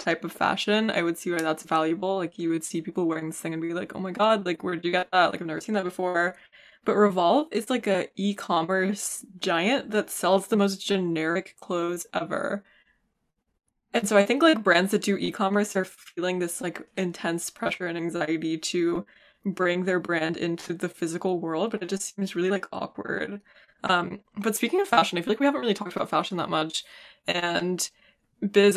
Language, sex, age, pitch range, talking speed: English, female, 20-39, 170-200 Hz, 205 wpm